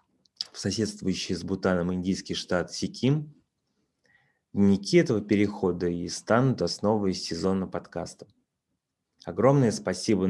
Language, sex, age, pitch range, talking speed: Russian, male, 20-39, 90-110 Hz, 100 wpm